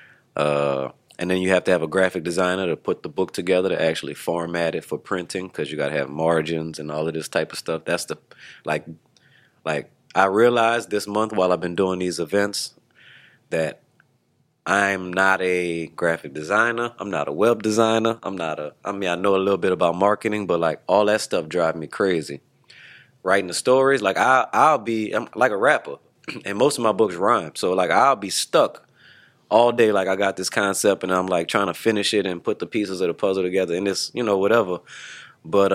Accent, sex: American, male